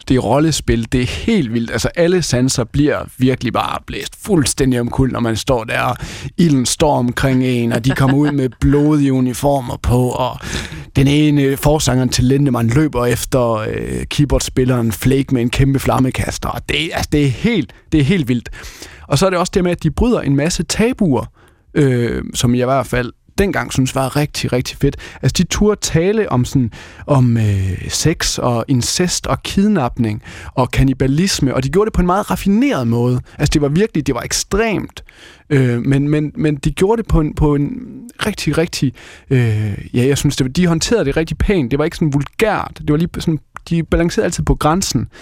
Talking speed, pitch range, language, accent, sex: 205 wpm, 125-155 Hz, Danish, native, male